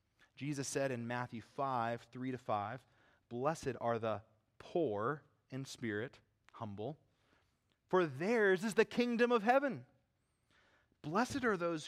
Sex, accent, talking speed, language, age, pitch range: male, American, 120 wpm, English, 30-49, 110-140 Hz